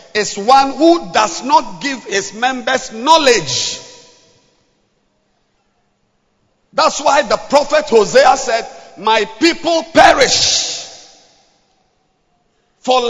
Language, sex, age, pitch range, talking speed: English, male, 50-69, 210-300 Hz, 85 wpm